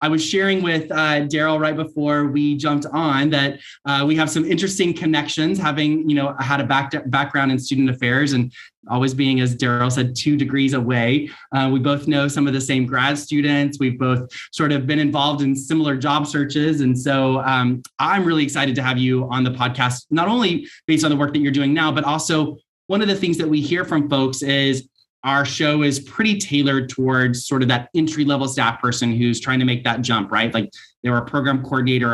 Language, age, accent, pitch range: English, 20-39, American, 125-150 Hz